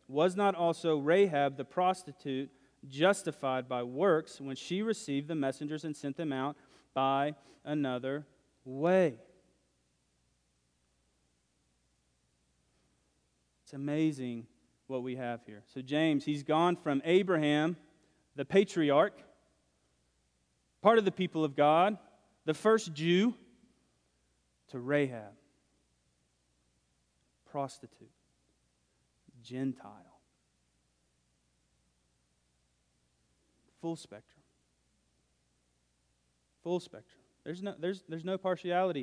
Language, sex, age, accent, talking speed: English, male, 30-49, American, 90 wpm